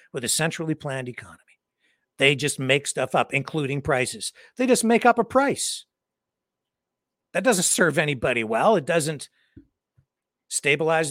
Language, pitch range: English, 125-170 Hz